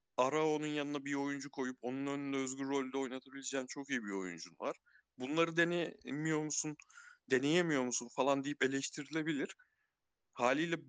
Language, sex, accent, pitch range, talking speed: Turkish, male, native, 125-175 Hz, 140 wpm